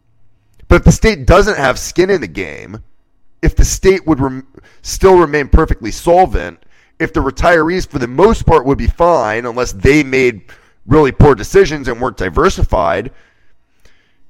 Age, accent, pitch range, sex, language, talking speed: 30-49, American, 120-180 Hz, male, English, 160 wpm